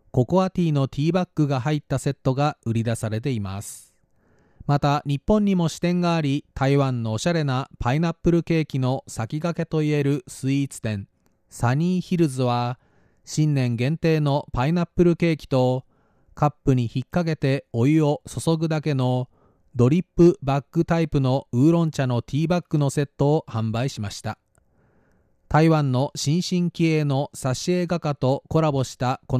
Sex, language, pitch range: male, Japanese, 125-160 Hz